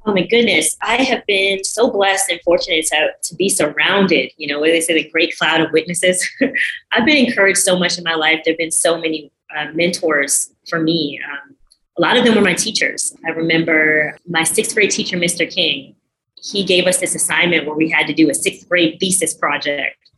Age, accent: 20-39, American